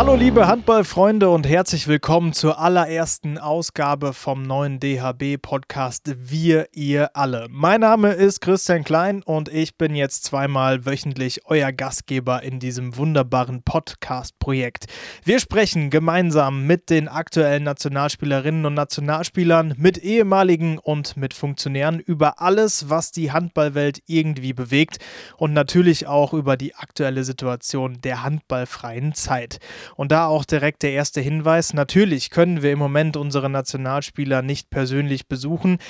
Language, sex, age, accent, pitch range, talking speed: German, male, 20-39, German, 135-165 Hz, 135 wpm